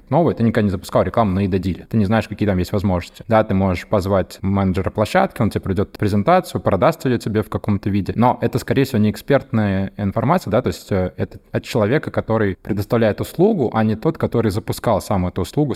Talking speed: 215 wpm